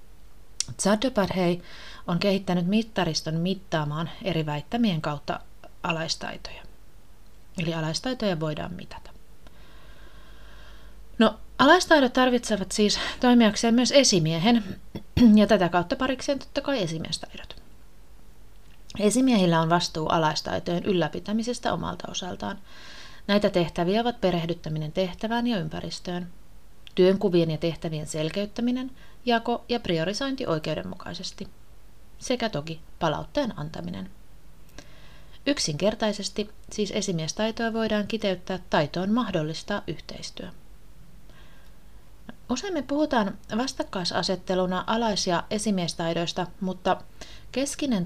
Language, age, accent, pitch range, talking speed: Finnish, 30-49, native, 170-225 Hz, 85 wpm